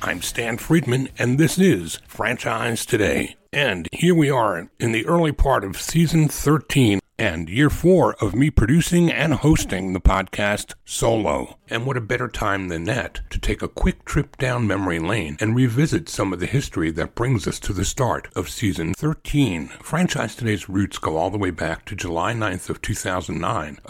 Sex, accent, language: male, American, English